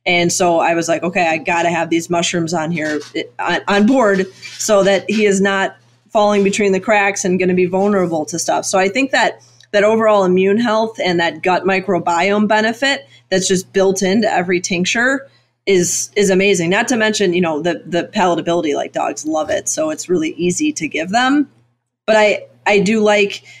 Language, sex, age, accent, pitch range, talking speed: English, female, 30-49, American, 170-200 Hz, 205 wpm